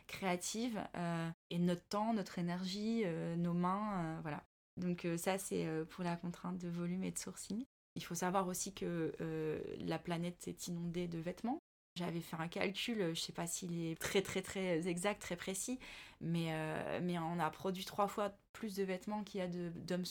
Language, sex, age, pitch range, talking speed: French, female, 20-39, 170-200 Hz, 205 wpm